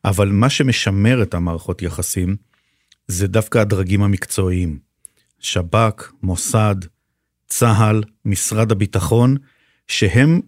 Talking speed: 90 wpm